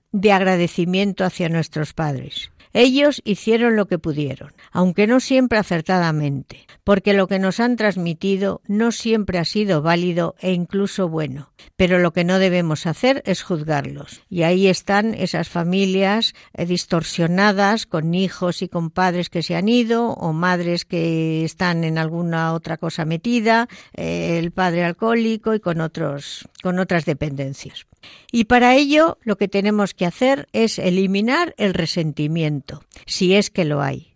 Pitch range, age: 165-205 Hz, 60-79